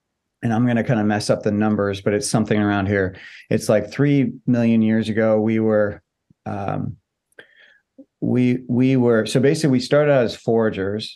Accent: American